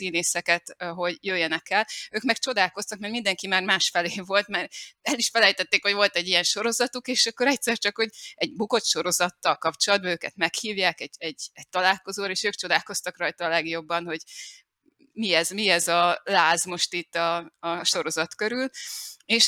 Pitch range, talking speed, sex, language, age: 175-220 Hz, 175 wpm, female, Hungarian, 20-39